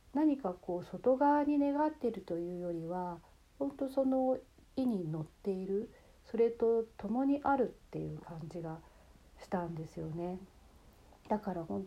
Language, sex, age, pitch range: Japanese, female, 40-59, 160-220 Hz